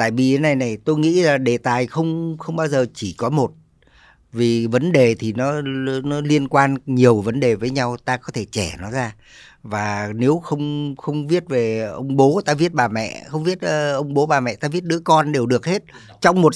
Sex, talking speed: female, 225 wpm